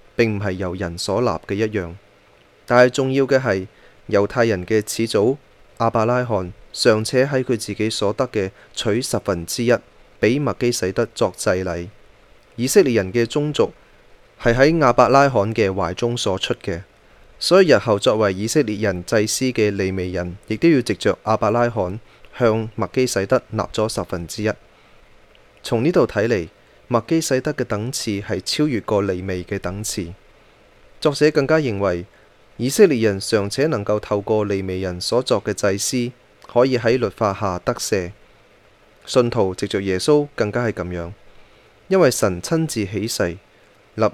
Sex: male